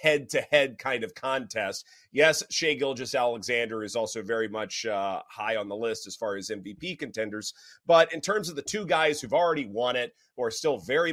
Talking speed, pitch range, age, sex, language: 195 wpm, 130-195 Hz, 30-49, male, English